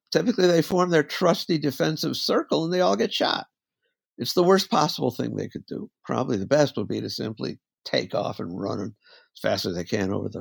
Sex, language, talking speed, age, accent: male, English, 220 wpm, 60-79, American